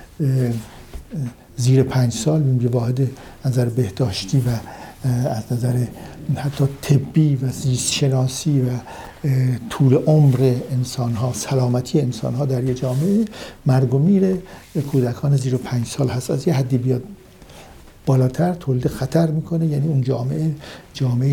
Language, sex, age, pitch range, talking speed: Persian, male, 60-79, 120-145 Hz, 130 wpm